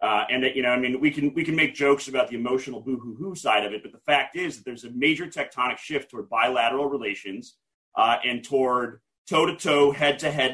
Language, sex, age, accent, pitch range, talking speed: English, male, 30-49, American, 120-140 Hz, 210 wpm